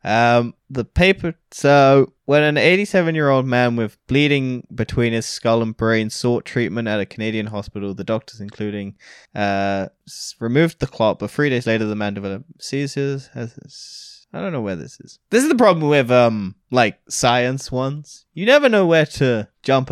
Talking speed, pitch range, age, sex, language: 180 wpm, 110-135 Hz, 20-39, male, English